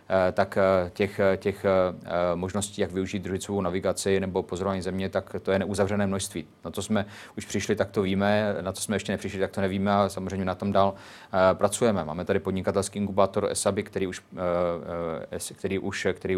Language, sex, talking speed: Czech, male, 170 wpm